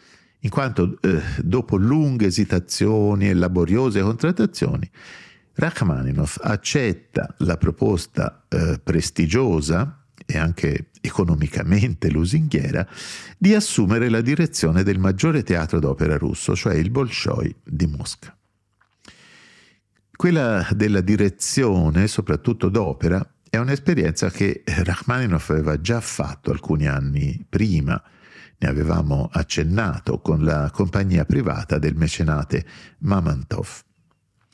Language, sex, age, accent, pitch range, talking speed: Italian, male, 50-69, native, 85-125 Hz, 100 wpm